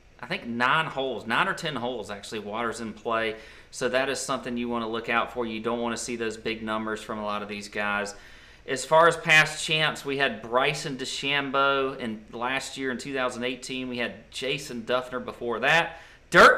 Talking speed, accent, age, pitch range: 205 wpm, American, 40-59, 115-140 Hz